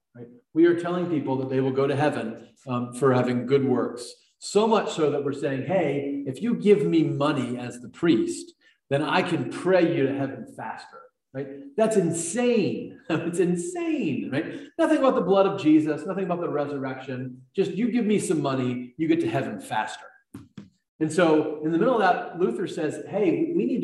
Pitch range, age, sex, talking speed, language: 125-190 Hz, 40-59, male, 195 wpm, English